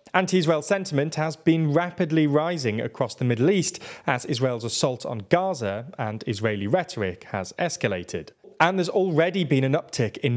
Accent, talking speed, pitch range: British, 155 wpm, 115-170 Hz